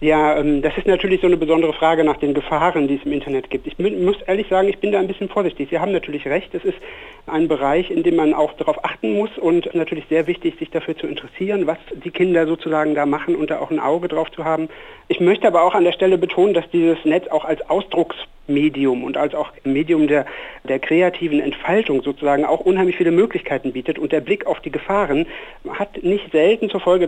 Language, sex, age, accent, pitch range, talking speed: German, male, 60-79, German, 150-190 Hz, 225 wpm